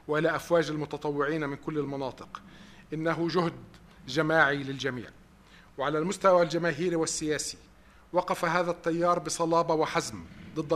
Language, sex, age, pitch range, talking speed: English, male, 50-69, 145-170 Hz, 110 wpm